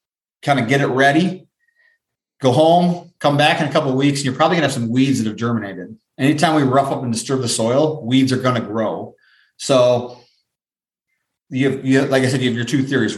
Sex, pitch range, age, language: male, 125-145 Hz, 30-49, English